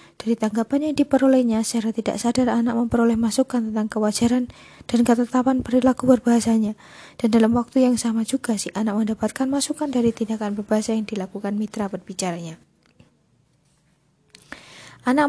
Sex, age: female, 20-39